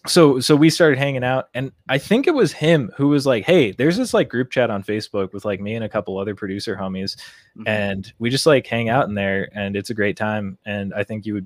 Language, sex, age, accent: English, male, 20-39, American